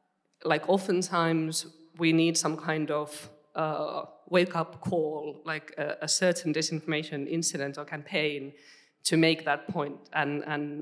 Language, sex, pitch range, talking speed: English, female, 150-165 Hz, 135 wpm